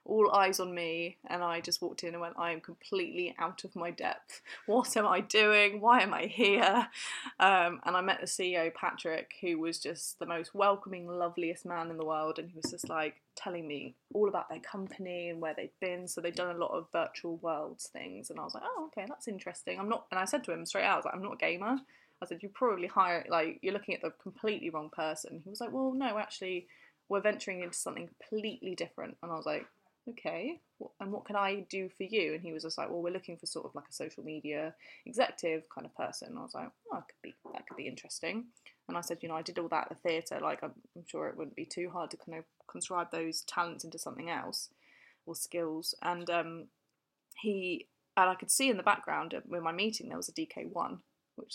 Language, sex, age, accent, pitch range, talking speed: English, female, 20-39, British, 170-205 Hz, 240 wpm